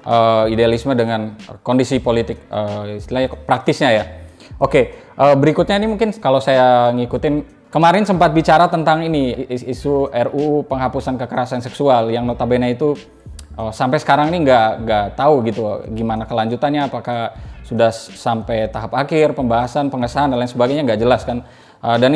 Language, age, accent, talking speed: Indonesian, 20-39, native, 155 wpm